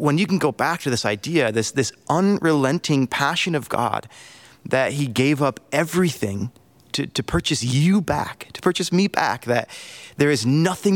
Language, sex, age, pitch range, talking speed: English, male, 30-49, 120-155 Hz, 175 wpm